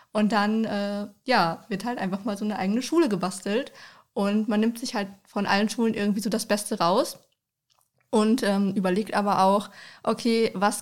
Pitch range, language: 185-220 Hz, German